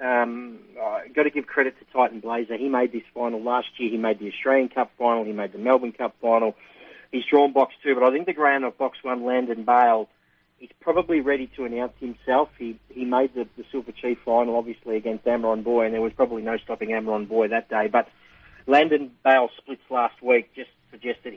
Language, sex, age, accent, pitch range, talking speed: English, male, 40-59, Australian, 115-135 Hz, 215 wpm